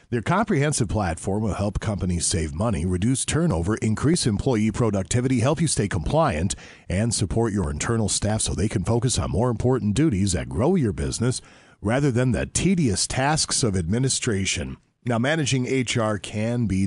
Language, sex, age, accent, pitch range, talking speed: English, male, 50-69, American, 95-135 Hz, 165 wpm